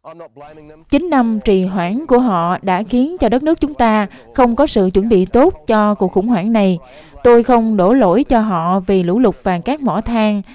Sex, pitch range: female, 195-240 Hz